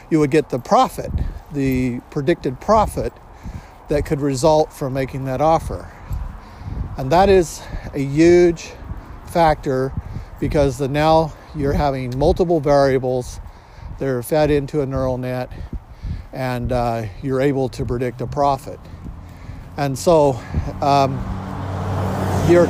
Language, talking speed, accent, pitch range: English, 125 wpm, American, 115-155 Hz